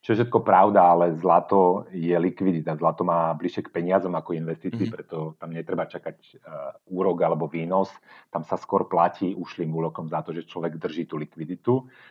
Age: 40-59